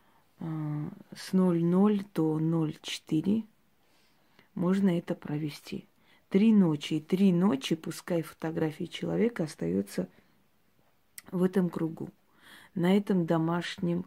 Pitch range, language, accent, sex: 155-185 Hz, Russian, native, female